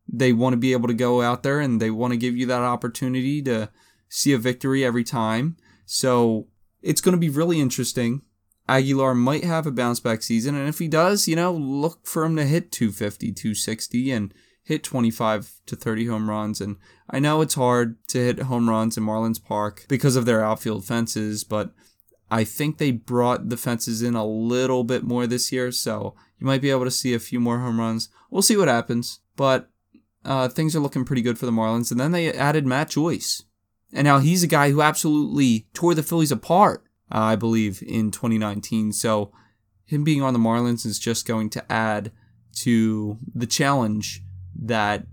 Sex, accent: male, American